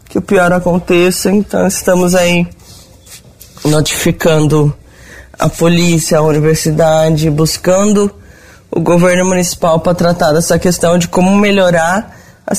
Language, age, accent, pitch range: Portuguese, 20-39, Brazilian, 160-180 Hz